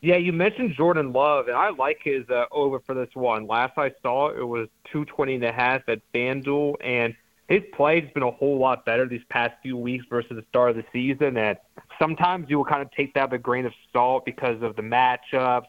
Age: 30-49